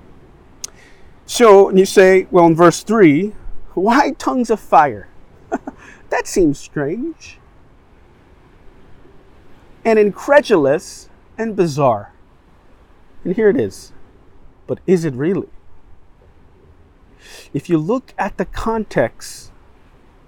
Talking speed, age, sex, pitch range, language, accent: 100 wpm, 40-59, male, 140-200 Hz, English, American